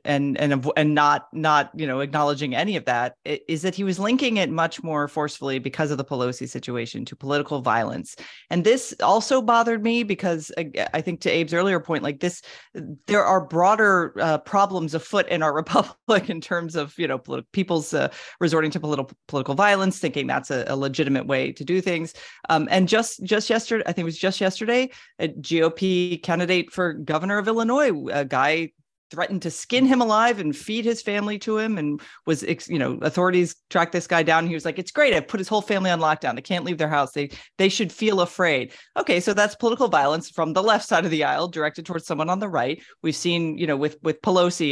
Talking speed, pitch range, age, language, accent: 215 wpm, 150-195 Hz, 30-49, English, American